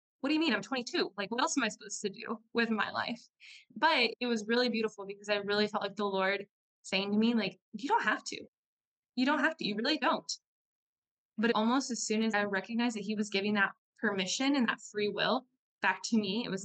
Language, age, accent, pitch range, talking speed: English, 10-29, American, 195-225 Hz, 240 wpm